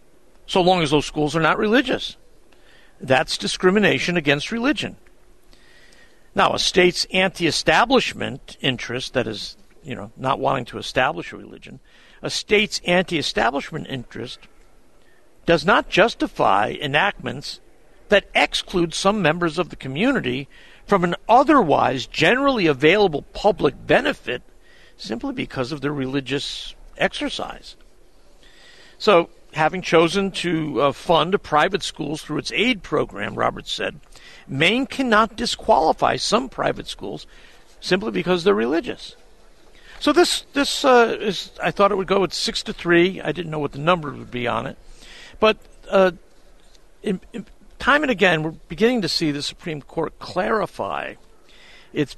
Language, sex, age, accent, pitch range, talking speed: English, male, 50-69, American, 150-210 Hz, 135 wpm